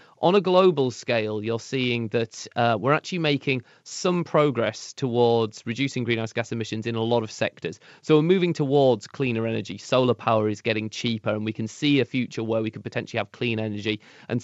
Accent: British